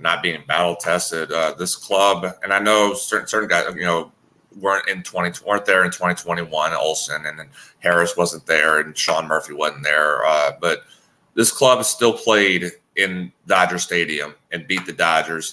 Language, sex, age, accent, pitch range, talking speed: English, male, 30-49, American, 80-95 Hz, 175 wpm